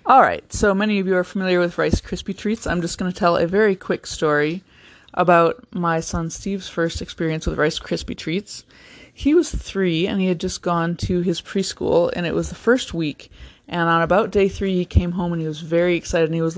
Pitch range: 165-210 Hz